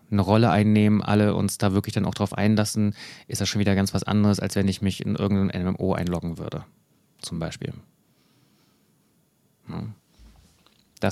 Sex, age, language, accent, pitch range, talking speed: male, 30-49, German, German, 100-115 Hz, 160 wpm